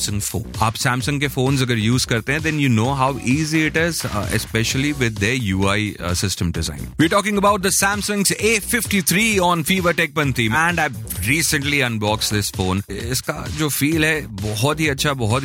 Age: 30-49